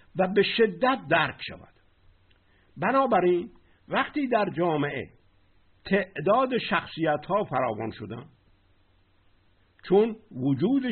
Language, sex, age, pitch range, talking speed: Persian, male, 50-69, 130-205 Hz, 90 wpm